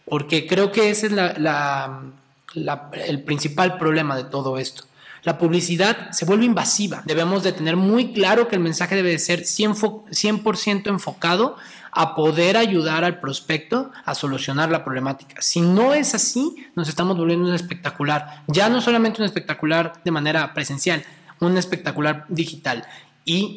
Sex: male